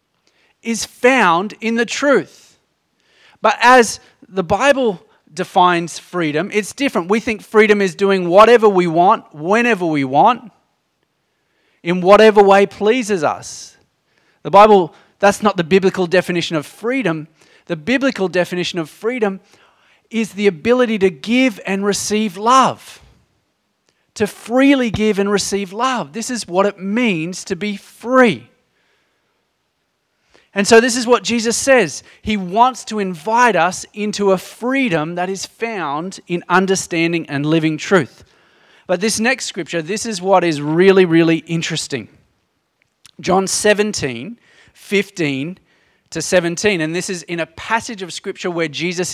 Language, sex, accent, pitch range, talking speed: English, male, Australian, 180-225 Hz, 140 wpm